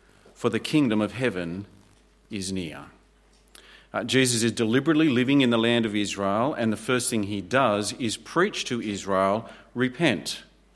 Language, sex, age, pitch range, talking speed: English, male, 40-59, 105-135 Hz, 155 wpm